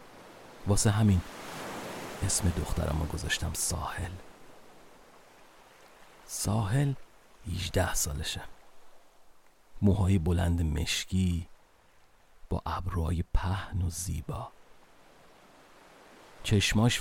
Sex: male